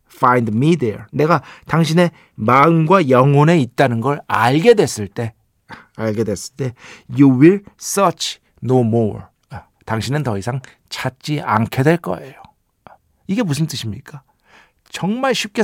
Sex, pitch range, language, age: male, 115-160 Hz, Korean, 50-69